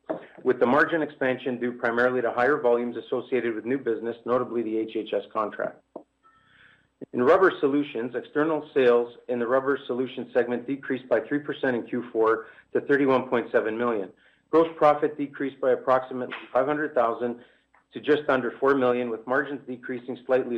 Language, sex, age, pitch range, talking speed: English, male, 40-59, 120-140 Hz, 145 wpm